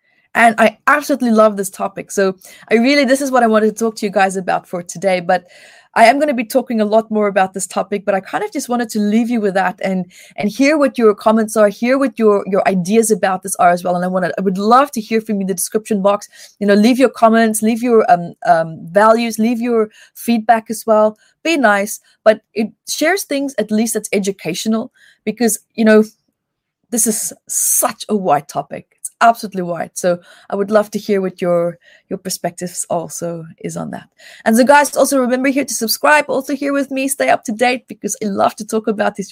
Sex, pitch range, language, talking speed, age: female, 200-250 Hz, English, 230 wpm, 20-39